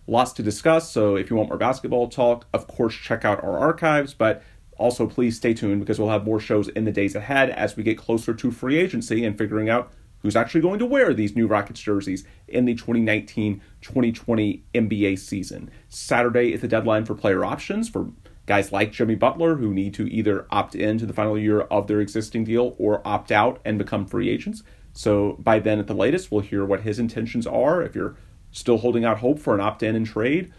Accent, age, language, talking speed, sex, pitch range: American, 30-49, English, 215 wpm, male, 105-120 Hz